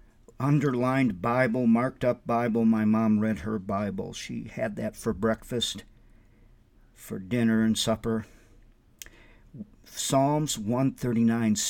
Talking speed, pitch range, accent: 110 wpm, 105-125 Hz, American